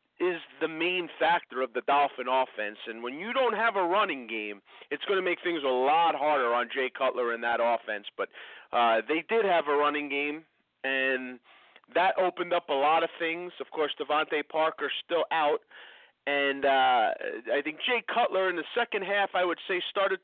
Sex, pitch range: male, 140-185 Hz